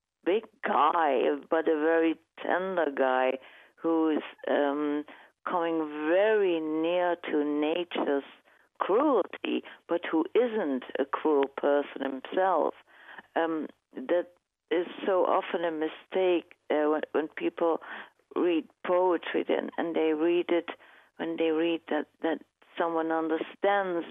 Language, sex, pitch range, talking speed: English, female, 150-190 Hz, 120 wpm